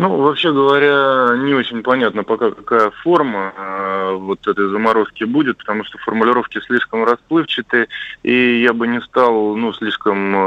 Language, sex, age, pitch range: Russian, male, 20-39, 100-120 Hz